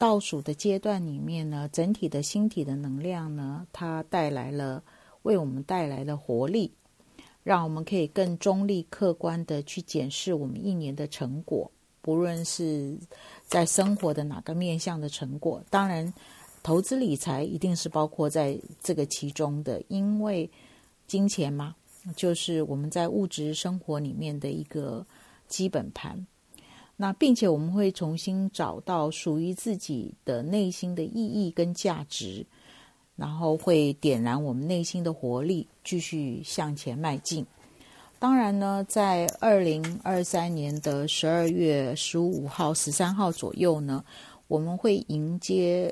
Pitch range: 150-190 Hz